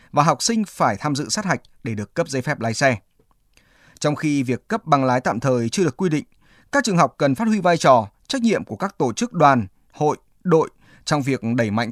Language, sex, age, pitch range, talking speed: Vietnamese, male, 20-39, 125-170 Hz, 240 wpm